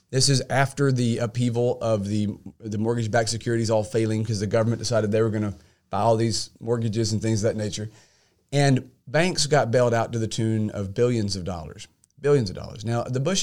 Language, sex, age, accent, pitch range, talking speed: English, male, 40-59, American, 110-130 Hz, 210 wpm